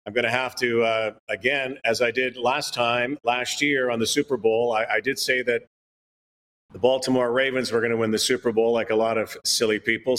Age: 40-59